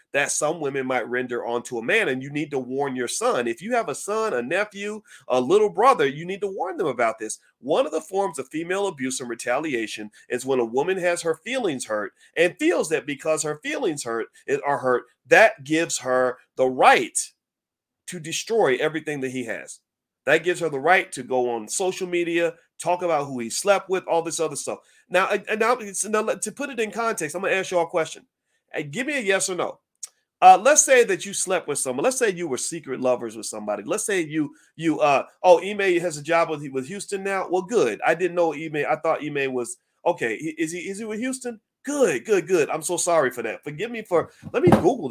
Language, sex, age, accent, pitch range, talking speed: English, male, 40-59, American, 140-215 Hz, 225 wpm